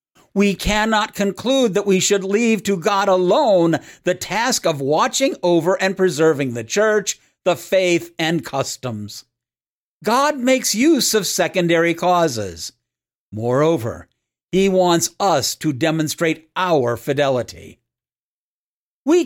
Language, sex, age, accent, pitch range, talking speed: English, male, 50-69, American, 155-200 Hz, 120 wpm